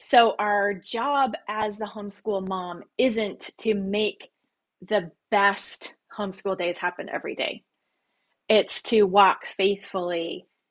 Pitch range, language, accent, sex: 195-240 Hz, English, American, female